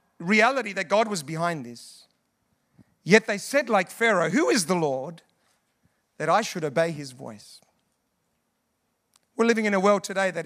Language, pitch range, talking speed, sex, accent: English, 155-225 Hz, 160 wpm, male, British